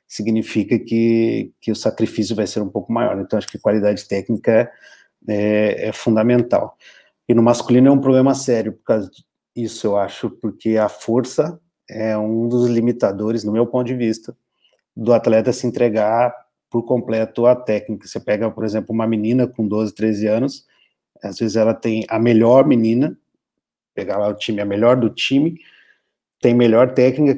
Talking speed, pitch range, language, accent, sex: 175 wpm, 110-120 Hz, Portuguese, Brazilian, male